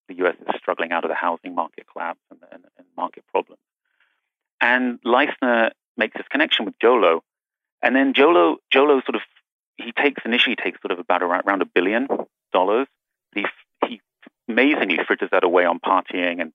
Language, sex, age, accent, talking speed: English, male, 30-49, British, 175 wpm